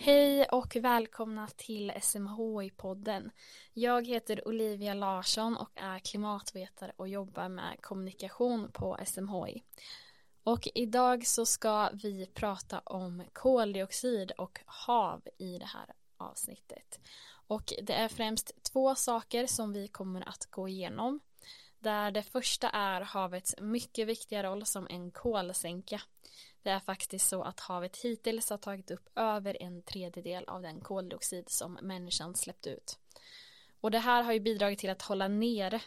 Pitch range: 185-230 Hz